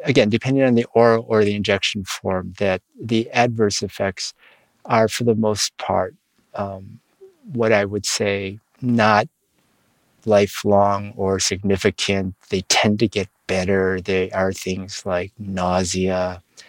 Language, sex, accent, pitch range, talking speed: English, male, American, 95-115 Hz, 135 wpm